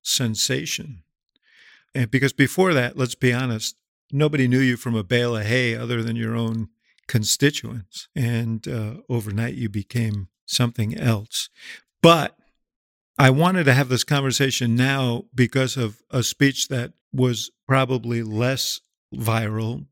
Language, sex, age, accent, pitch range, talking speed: English, male, 50-69, American, 115-130 Hz, 135 wpm